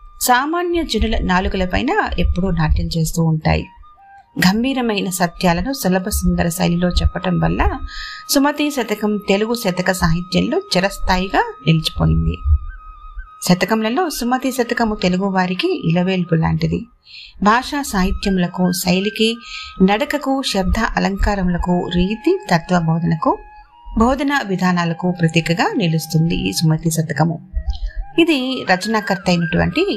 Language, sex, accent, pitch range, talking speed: Telugu, female, native, 165-235 Hz, 80 wpm